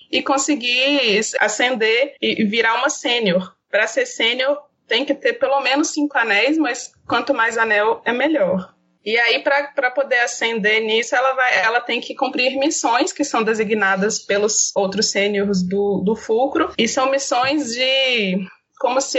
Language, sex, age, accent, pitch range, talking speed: Portuguese, female, 20-39, Brazilian, 215-275 Hz, 160 wpm